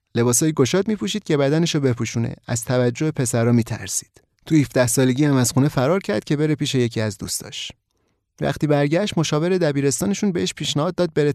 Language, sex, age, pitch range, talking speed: Persian, male, 30-49, 125-180 Hz, 175 wpm